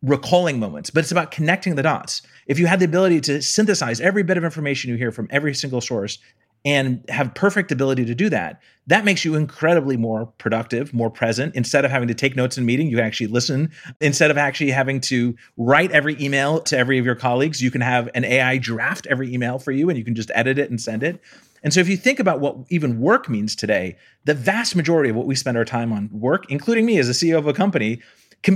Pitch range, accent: 120-165 Hz, American